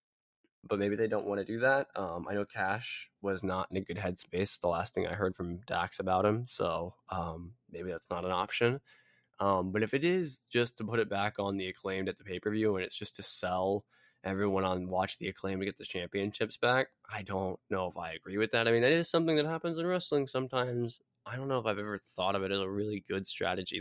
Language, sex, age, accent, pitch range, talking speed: English, male, 10-29, American, 95-115 Hz, 245 wpm